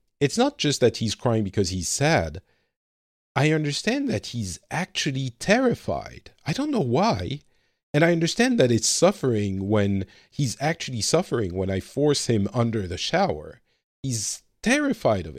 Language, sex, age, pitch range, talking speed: English, male, 50-69, 95-130 Hz, 150 wpm